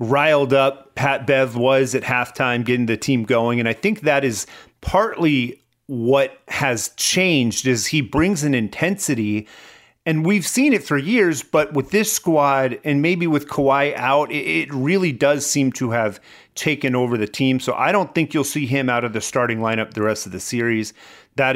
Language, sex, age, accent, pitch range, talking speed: English, male, 40-59, American, 115-150 Hz, 190 wpm